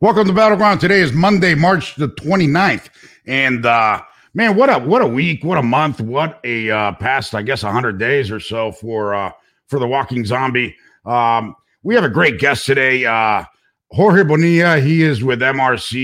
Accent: American